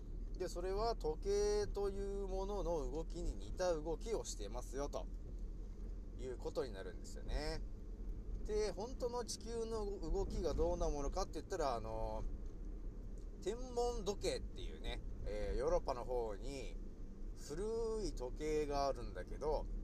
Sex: male